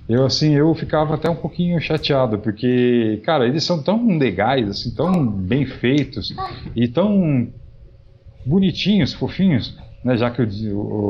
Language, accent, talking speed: Portuguese, Brazilian, 145 wpm